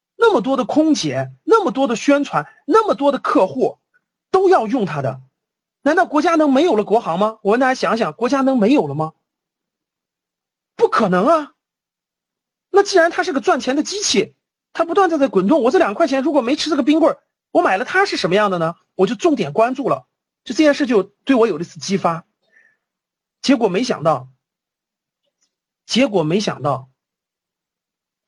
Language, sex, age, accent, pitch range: Chinese, male, 40-59, native, 190-305 Hz